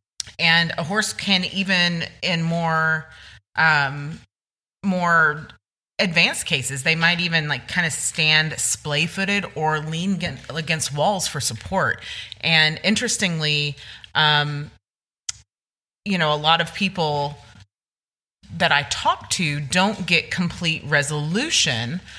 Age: 30-49